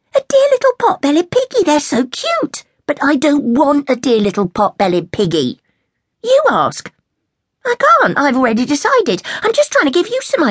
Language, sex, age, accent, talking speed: English, female, 50-69, British, 170 wpm